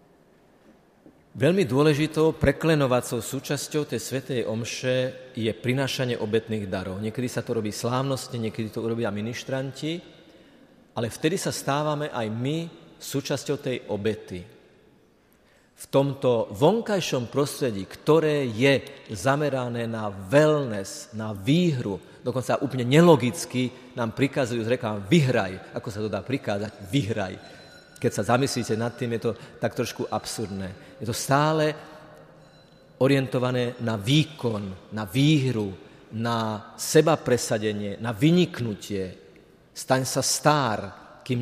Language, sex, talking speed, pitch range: Slovak, male, 115 wpm, 110-145 Hz